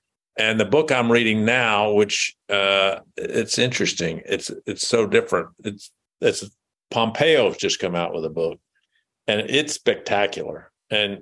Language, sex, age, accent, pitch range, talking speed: English, male, 50-69, American, 95-125 Hz, 145 wpm